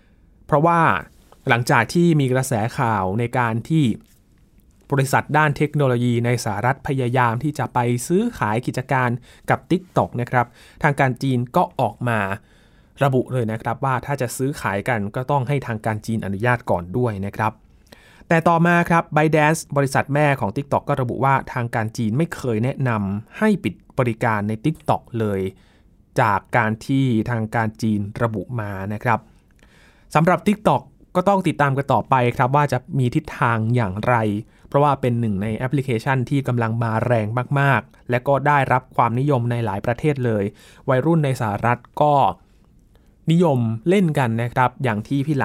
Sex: male